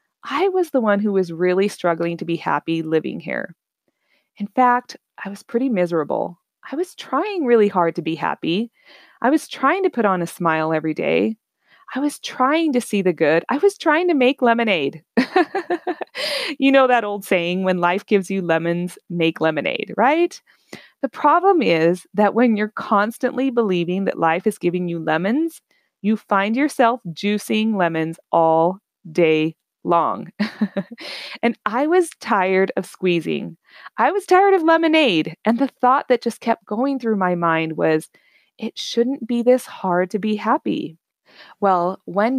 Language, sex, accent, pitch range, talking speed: English, female, American, 175-255 Hz, 165 wpm